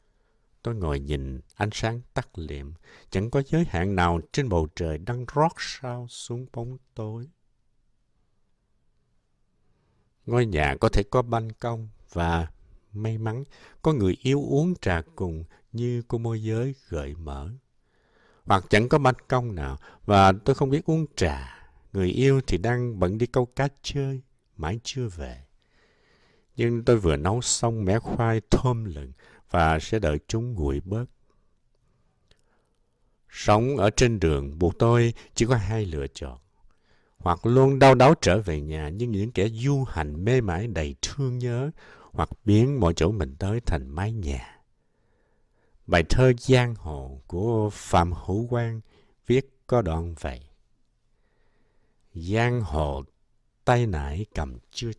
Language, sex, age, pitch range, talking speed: Vietnamese, male, 60-79, 85-125 Hz, 150 wpm